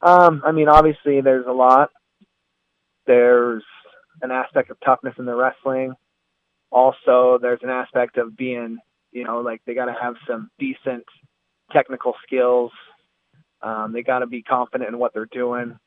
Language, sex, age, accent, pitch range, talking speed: English, male, 20-39, American, 115-130 Hz, 160 wpm